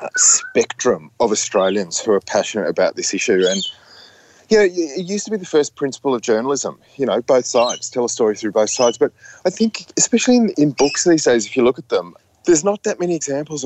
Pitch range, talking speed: 105-160 Hz, 220 wpm